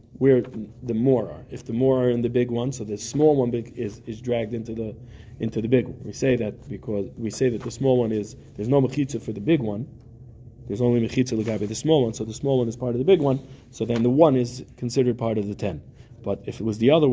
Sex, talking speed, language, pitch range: male, 270 wpm, English, 115-130 Hz